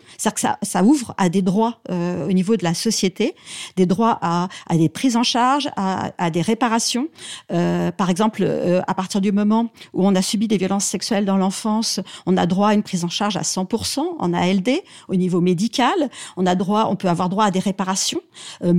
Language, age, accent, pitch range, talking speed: French, 40-59, French, 190-245 Hz, 215 wpm